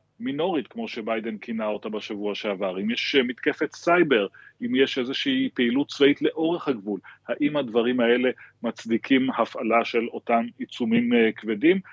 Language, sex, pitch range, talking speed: Hebrew, male, 110-135 Hz, 135 wpm